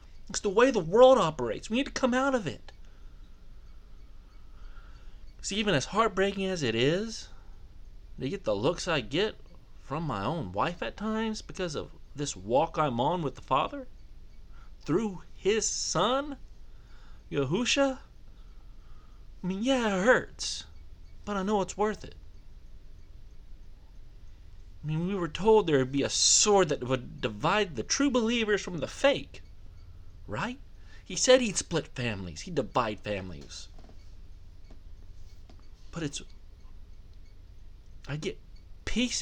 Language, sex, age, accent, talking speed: English, male, 30-49, American, 135 wpm